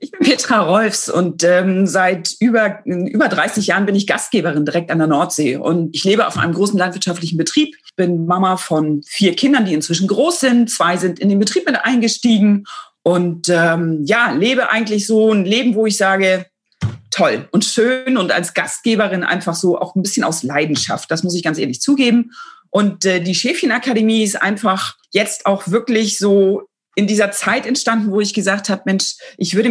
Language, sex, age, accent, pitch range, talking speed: German, female, 40-59, German, 175-225 Hz, 190 wpm